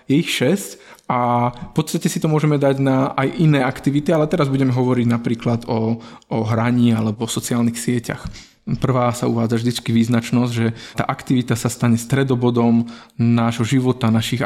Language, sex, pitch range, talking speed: Slovak, male, 115-130 Hz, 160 wpm